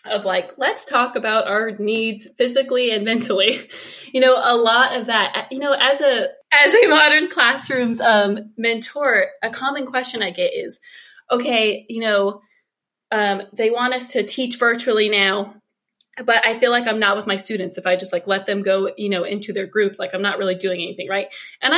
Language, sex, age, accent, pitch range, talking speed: English, female, 20-39, American, 200-260 Hz, 200 wpm